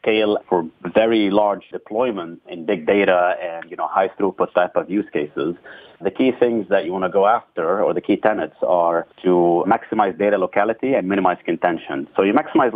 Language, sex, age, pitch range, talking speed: English, male, 30-49, 90-115 Hz, 190 wpm